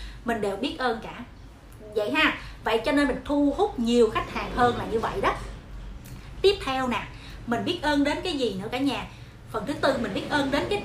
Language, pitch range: Vietnamese, 250-365 Hz